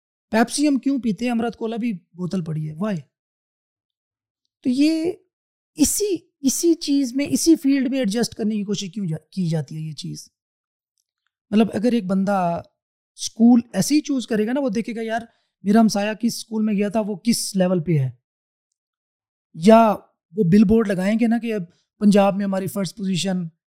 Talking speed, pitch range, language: 180 wpm, 180-235 Hz, Urdu